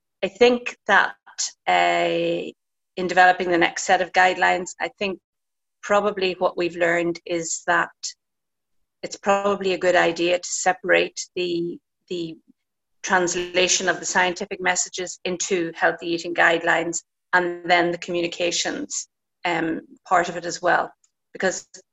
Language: English